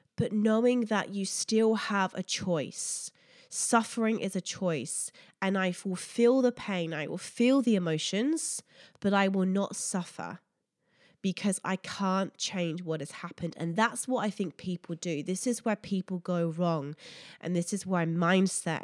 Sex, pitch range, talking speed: female, 175-225 Hz, 170 wpm